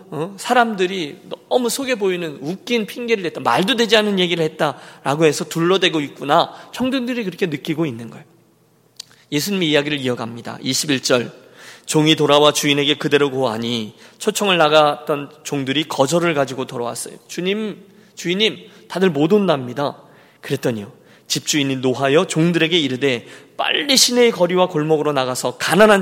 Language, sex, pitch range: Korean, male, 150-205 Hz